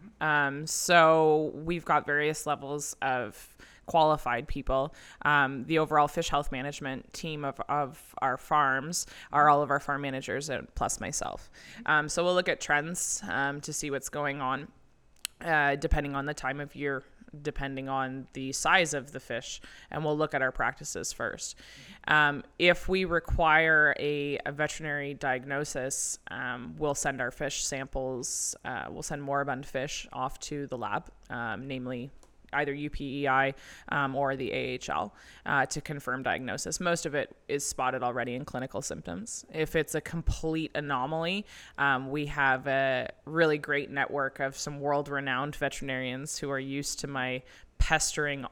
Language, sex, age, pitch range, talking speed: English, female, 20-39, 135-150 Hz, 160 wpm